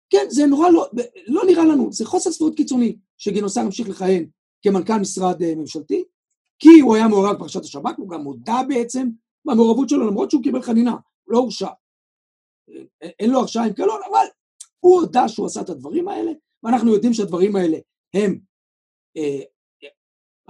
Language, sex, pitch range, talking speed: Hebrew, male, 195-315 Hz, 165 wpm